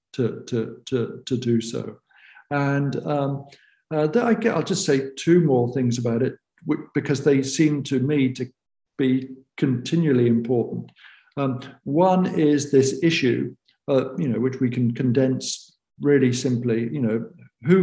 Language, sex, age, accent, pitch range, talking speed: English, male, 50-69, British, 125-150 Hz, 140 wpm